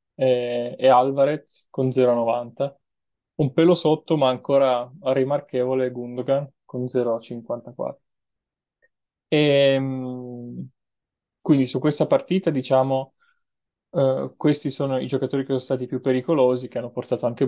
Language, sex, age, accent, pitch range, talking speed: Italian, male, 20-39, native, 125-150 Hz, 115 wpm